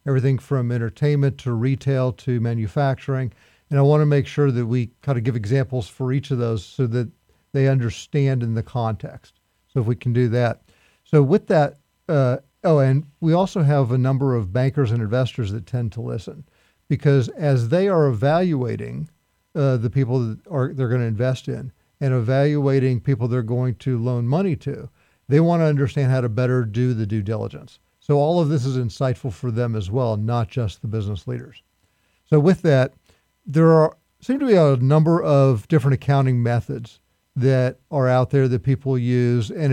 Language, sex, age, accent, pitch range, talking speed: English, male, 50-69, American, 120-145 Hz, 190 wpm